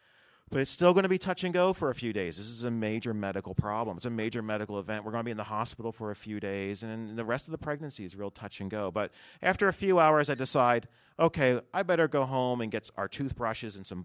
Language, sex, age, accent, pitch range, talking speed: English, male, 40-59, American, 100-135 Hz, 255 wpm